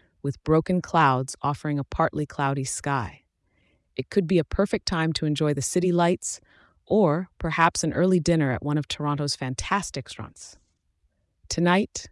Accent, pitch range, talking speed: American, 135-165 Hz, 155 wpm